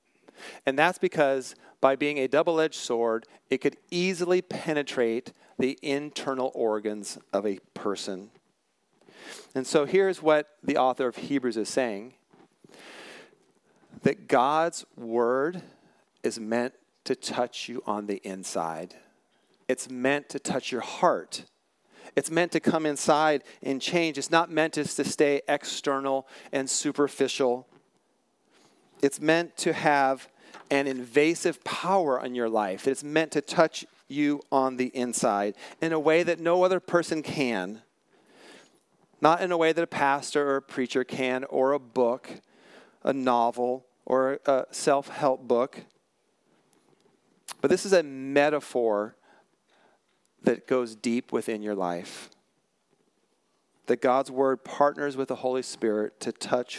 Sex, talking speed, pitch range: male, 135 wpm, 125-155 Hz